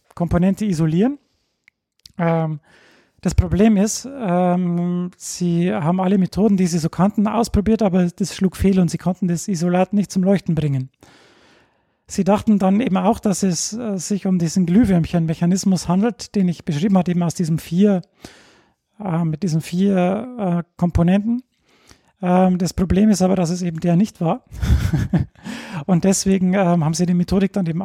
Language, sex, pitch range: German, male, 175-200 Hz